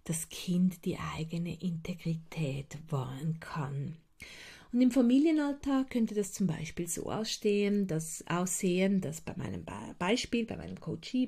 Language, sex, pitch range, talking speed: German, female, 170-230 Hz, 130 wpm